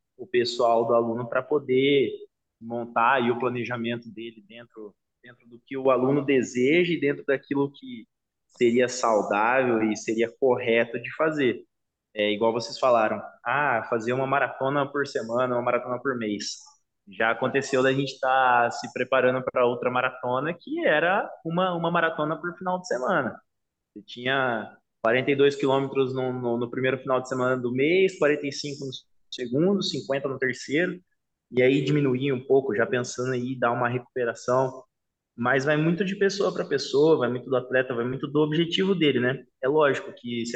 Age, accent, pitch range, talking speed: 20-39, Brazilian, 120-145 Hz, 165 wpm